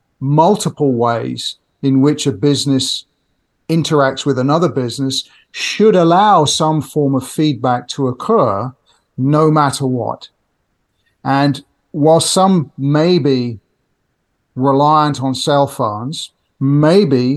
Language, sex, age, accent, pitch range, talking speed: English, male, 50-69, British, 130-155 Hz, 105 wpm